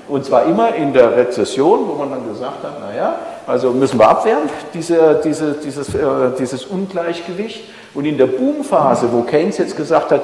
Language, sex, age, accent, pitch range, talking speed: German, male, 50-69, German, 130-215 Hz, 180 wpm